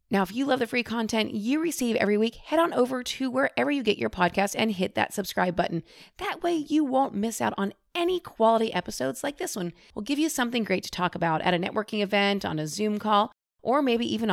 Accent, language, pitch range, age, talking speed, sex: American, English, 185-240 Hz, 30-49, 240 wpm, female